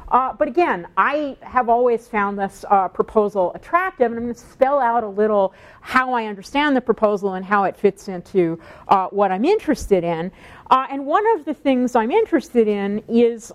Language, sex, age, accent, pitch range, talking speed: English, female, 50-69, American, 185-235 Hz, 195 wpm